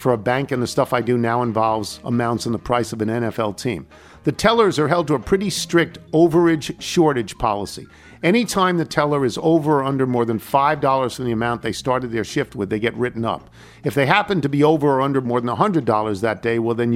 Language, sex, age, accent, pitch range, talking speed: English, male, 50-69, American, 120-160 Hz, 235 wpm